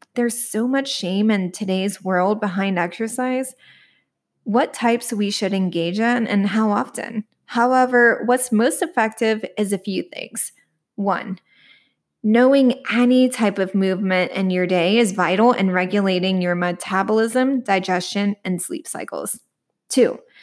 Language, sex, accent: English, female, American